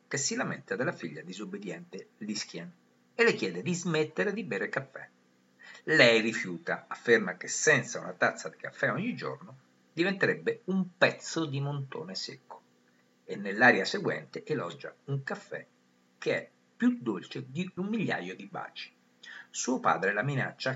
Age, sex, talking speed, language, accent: 50-69, male, 145 wpm, Italian, native